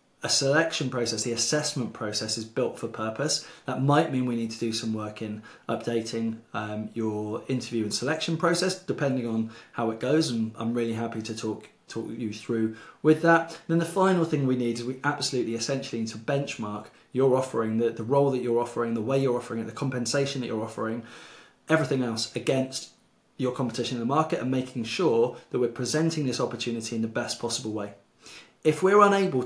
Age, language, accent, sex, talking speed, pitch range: 20-39, English, British, male, 200 wpm, 115-145 Hz